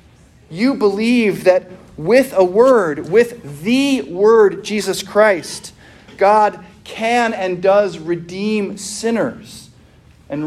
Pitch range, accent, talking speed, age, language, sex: 145-195 Hz, American, 105 wpm, 40-59, English, male